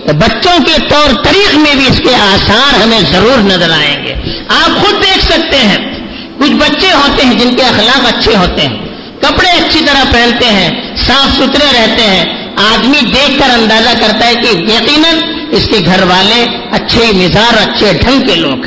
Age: 50-69